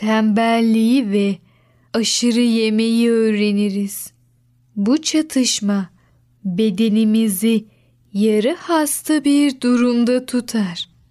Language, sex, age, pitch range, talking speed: Turkish, female, 10-29, 195-245 Hz, 70 wpm